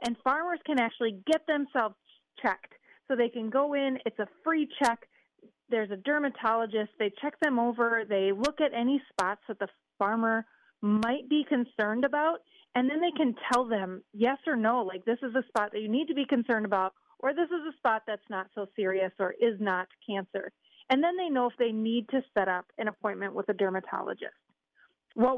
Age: 30-49